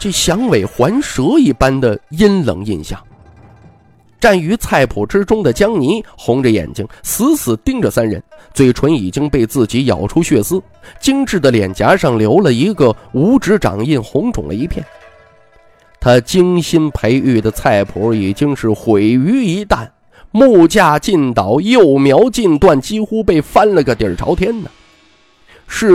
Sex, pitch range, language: male, 115-185 Hz, Chinese